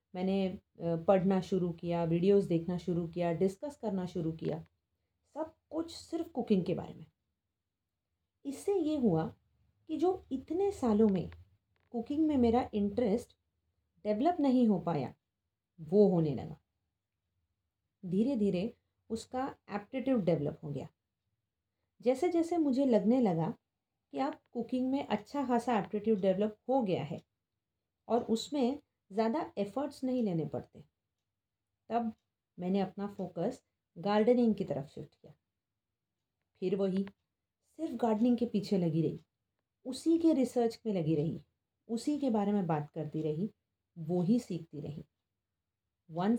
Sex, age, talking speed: female, 30-49, 135 wpm